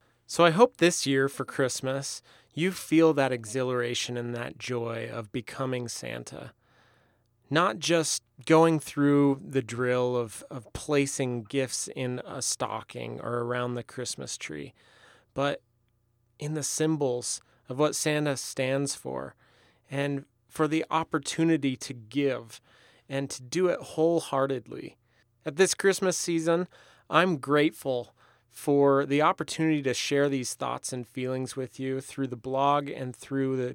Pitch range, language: 125-150 Hz, English